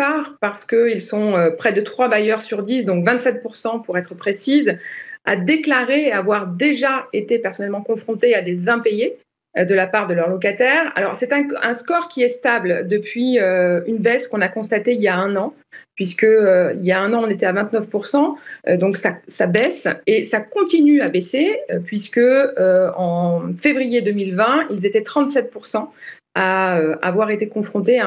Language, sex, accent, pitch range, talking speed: French, female, French, 195-260 Hz, 185 wpm